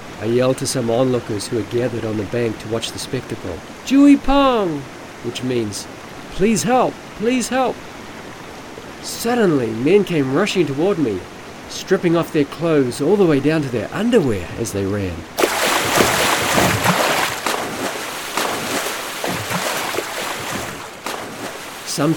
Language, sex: English, male